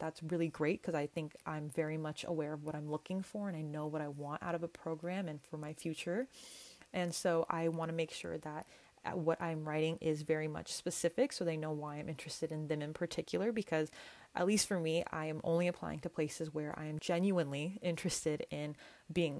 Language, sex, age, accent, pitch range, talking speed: English, female, 20-39, American, 155-185 Hz, 225 wpm